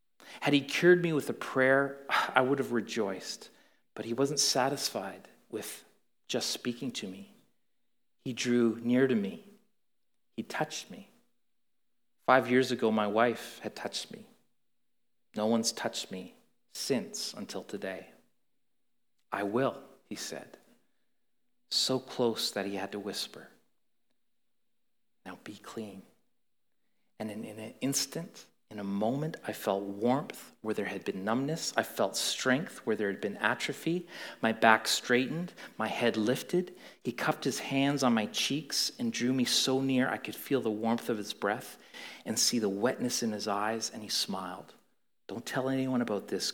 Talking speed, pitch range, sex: 155 wpm, 110-135 Hz, male